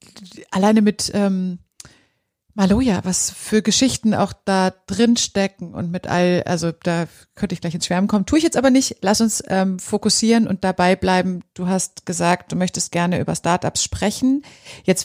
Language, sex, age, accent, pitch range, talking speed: German, female, 30-49, German, 180-215 Hz, 175 wpm